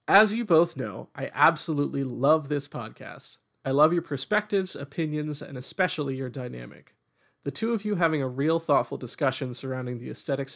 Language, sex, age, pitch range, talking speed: English, male, 30-49, 130-170 Hz, 170 wpm